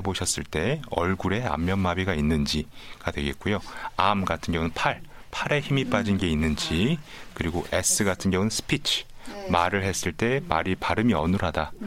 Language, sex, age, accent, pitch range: Korean, male, 30-49, native, 85-120 Hz